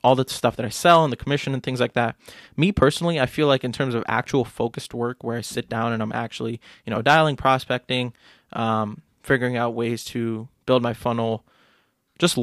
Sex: male